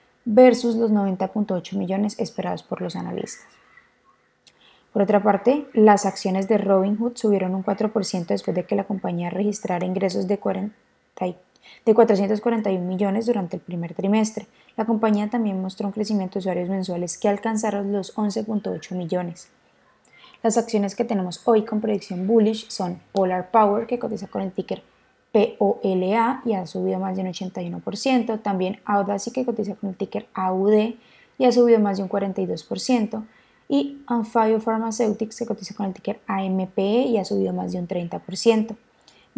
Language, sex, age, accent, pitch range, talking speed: Spanish, female, 20-39, Colombian, 190-225 Hz, 155 wpm